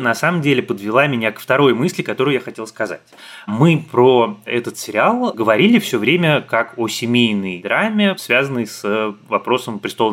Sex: male